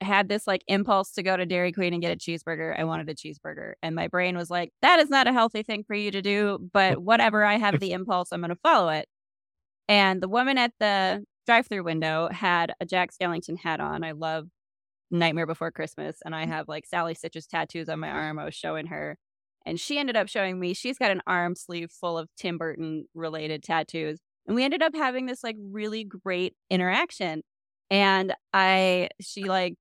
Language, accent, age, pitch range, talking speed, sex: English, American, 20-39, 175-220 Hz, 210 wpm, female